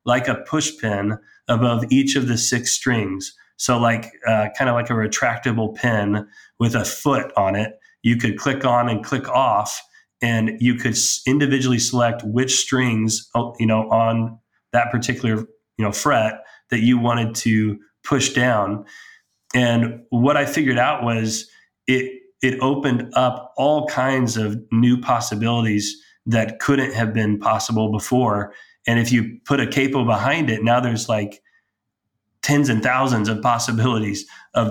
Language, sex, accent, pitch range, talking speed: English, male, American, 110-125 Hz, 155 wpm